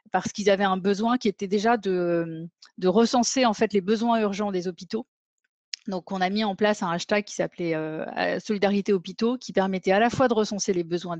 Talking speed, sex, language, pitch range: 200 wpm, female, French, 175-215 Hz